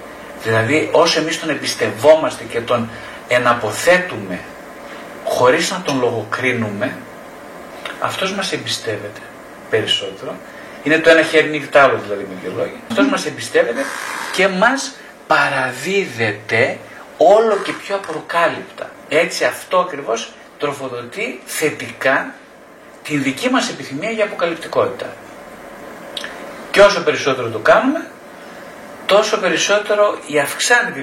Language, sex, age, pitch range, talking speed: Greek, male, 50-69, 140-205 Hz, 105 wpm